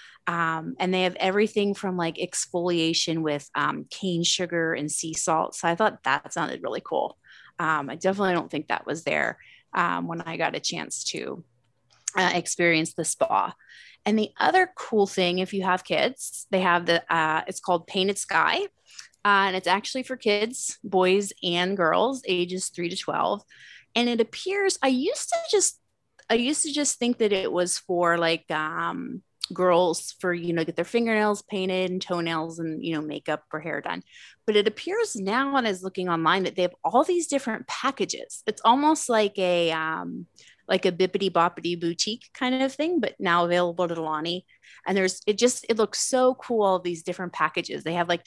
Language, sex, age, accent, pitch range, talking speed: English, female, 30-49, American, 170-215 Hz, 195 wpm